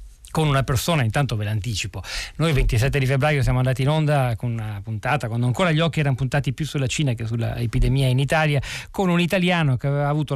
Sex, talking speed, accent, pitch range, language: male, 215 wpm, native, 120-155 Hz, Italian